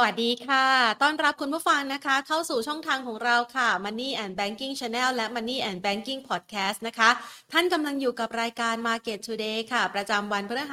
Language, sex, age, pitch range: Thai, female, 30-49, 205-250 Hz